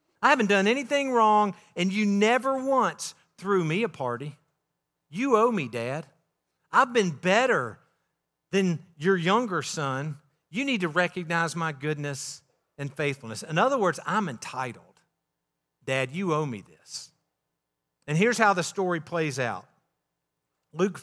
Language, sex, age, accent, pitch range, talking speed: English, male, 50-69, American, 140-195 Hz, 145 wpm